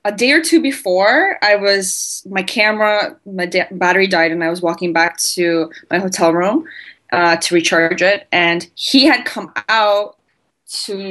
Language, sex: English, female